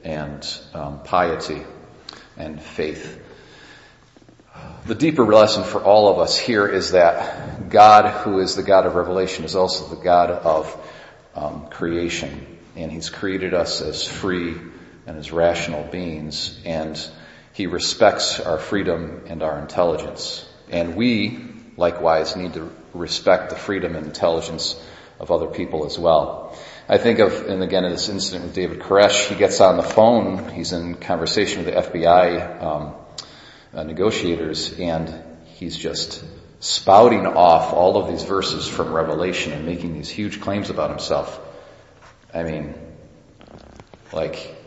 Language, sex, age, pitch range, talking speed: English, male, 40-59, 80-95 Hz, 145 wpm